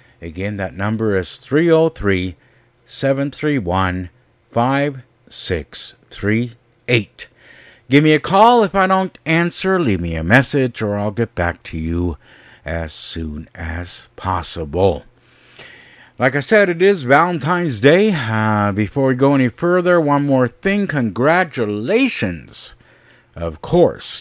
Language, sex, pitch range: English, male, 95-145 Hz